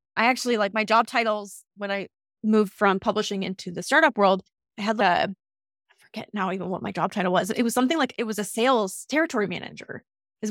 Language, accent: English, American